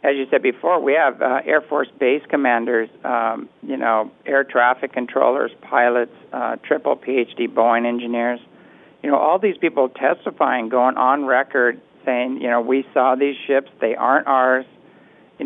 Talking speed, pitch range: 165 wpm, 120-135 Hz